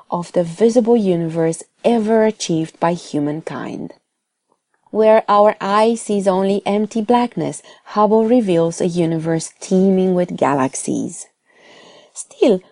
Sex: female